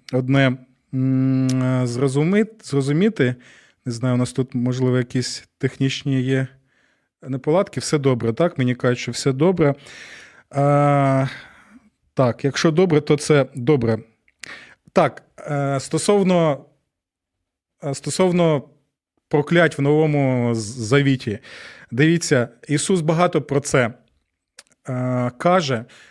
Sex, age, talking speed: male, 20-39, 95 wpm